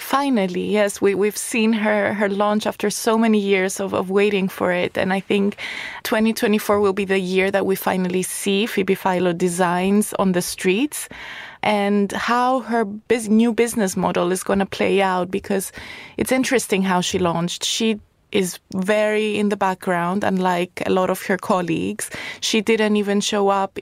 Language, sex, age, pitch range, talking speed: English, female, 20-39, 185-210 Hz, 175 wpm